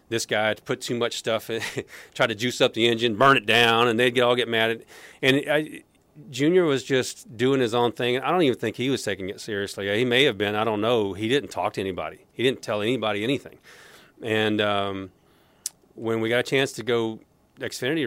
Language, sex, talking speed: English, male, 230 wpm